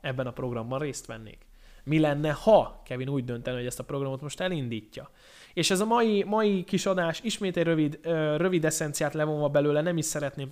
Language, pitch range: Hungarian, 120-155 Hz